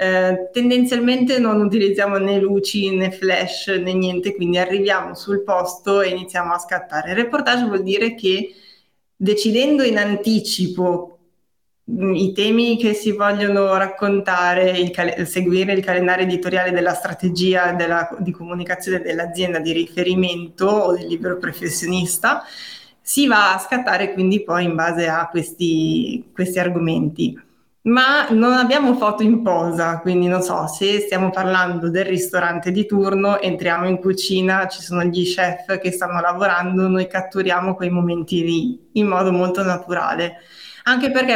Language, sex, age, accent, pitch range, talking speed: Italian, female, 20-39, native, 180-210 Hz, 140 wpm